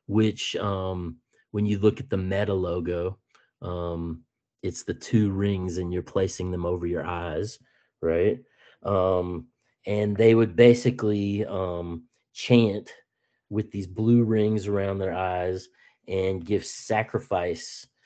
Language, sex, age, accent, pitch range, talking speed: English, male, 30-49, American, 90-105 Hz, 130 wpm